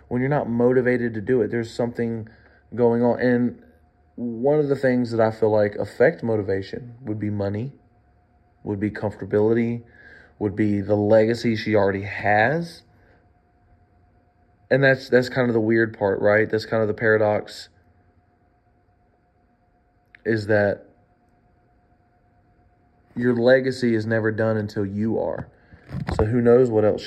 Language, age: English, 30-49